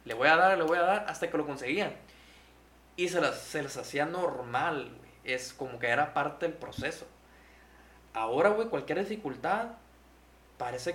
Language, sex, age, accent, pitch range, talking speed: Spanish, male, 20-39, Mexican, 130-180 Hz, 175 wpm